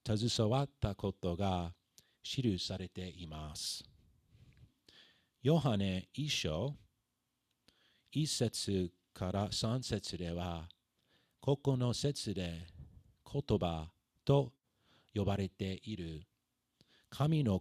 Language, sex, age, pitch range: Japanese, male, 40-59, 90-120 Hz